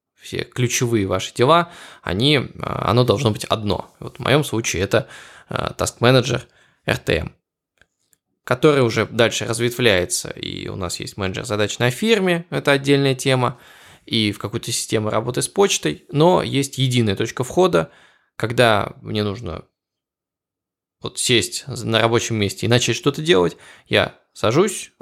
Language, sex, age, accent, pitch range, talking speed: Russian, male, 20-39, native, 105-140 Hz, 140 wpm